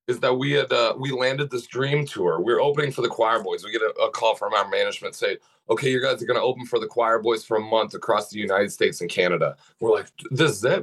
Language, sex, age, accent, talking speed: English, male, 30-49, American, 285 wpm